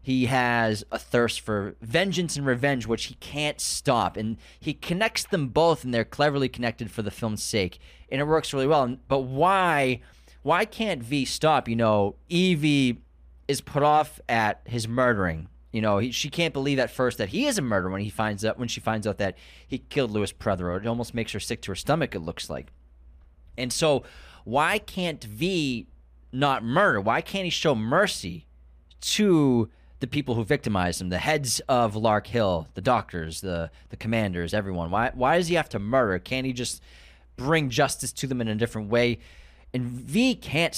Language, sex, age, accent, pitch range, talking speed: English, male, 30-49, American, 100-145 Hz, 195 wpm